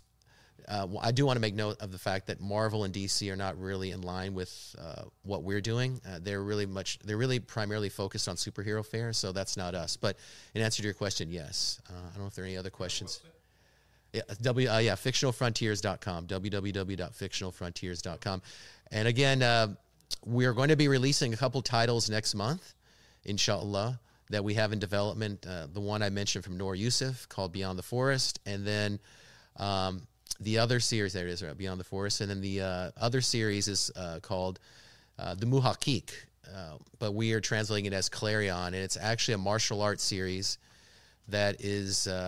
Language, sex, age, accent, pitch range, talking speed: English, male, 30-49, American, 95-115 Hz, 190 wpm